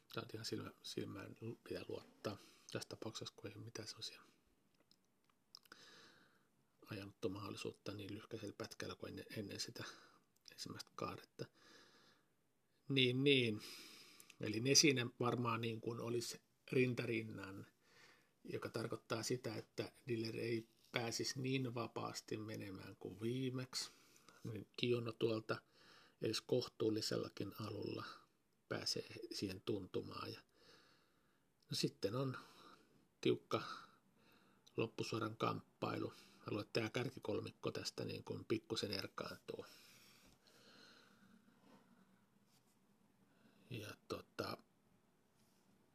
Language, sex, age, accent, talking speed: Finnish, male, 50-69, native, 85 wpm